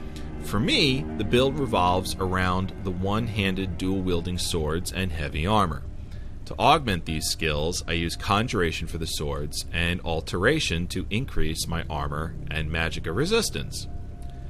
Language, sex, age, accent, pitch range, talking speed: English, male, 40-59, American, 80-110 Hz, 135 wpm